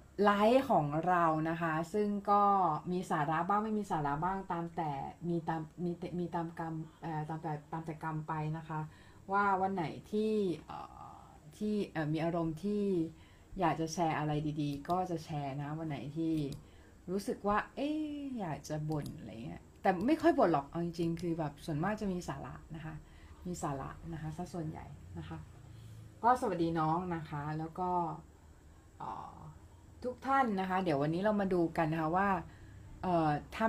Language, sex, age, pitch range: Thai, female, 20-39, 150-185 Hz